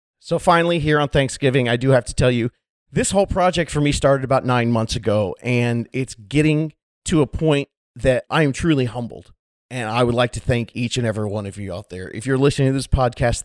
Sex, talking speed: male, 230 wpm